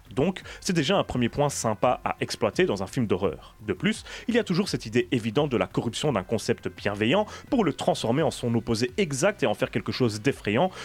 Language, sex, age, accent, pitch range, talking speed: French, male, 30-49, French, 110-155 Hz, 225 wpm